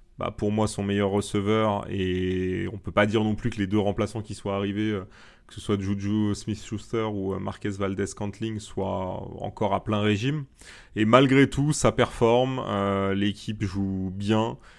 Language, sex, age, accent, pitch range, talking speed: French, male, 20-39, French, 100-110 Hz, 175 wpm